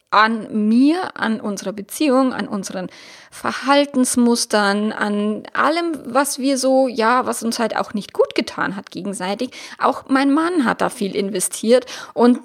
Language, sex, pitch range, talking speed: German, female, 220-280 Hz, 150 wpm